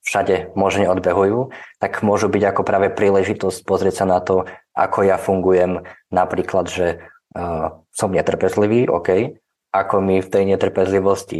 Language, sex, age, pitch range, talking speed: Slovak, male, 20-39, 90-100 Hz, 140 wpm